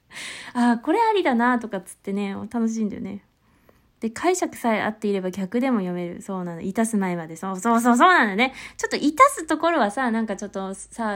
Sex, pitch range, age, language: female, 215-300 Hz, 20-39, Japanese